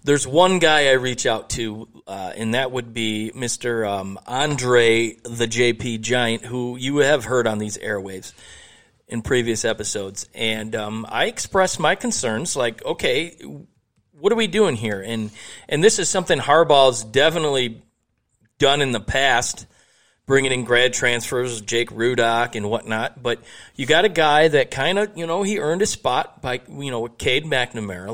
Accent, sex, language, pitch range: American, male, English, 110-140 Hz